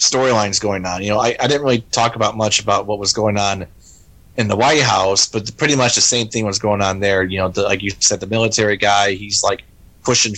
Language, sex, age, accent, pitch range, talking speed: English, male, 30-49, American, 95-110 Hz, 245 wpm